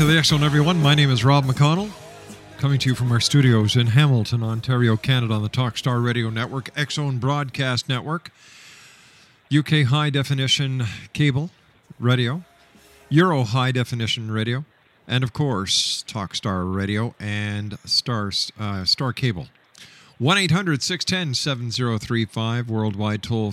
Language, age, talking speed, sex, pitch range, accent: English, 50-69, 125 wpm, male, 110-140 Hz, American